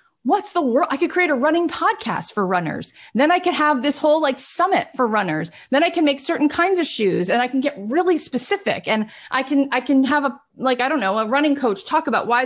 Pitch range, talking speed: 230-290 Hz, 250 wpm